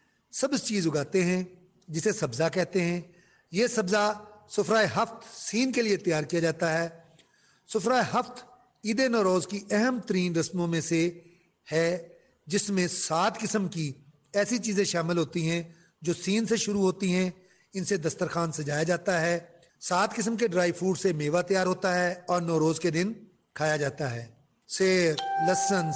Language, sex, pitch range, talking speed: Urdu, male, 165-205 Hz, 165 wpm